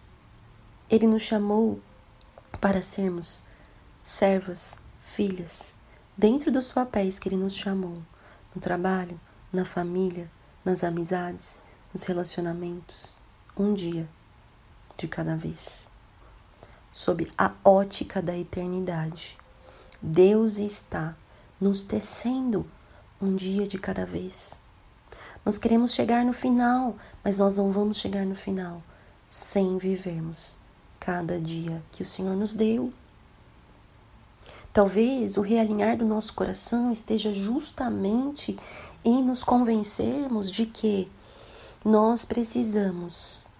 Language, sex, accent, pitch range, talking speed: Portuguese, female, Brazilian, 175-215 Hz, 105 wpm